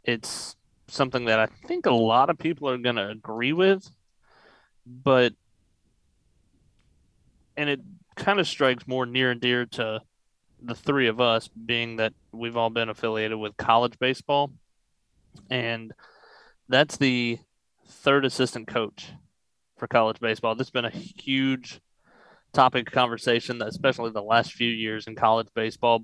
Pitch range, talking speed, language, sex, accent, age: 110-130 Hz, 145 wpm, English, male, American, 30-49